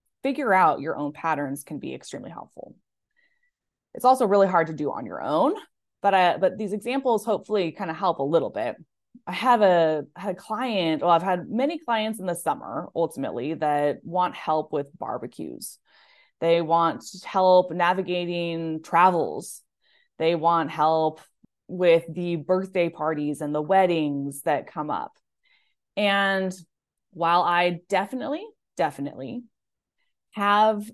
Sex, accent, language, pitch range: female, American, English, 160-210 Hz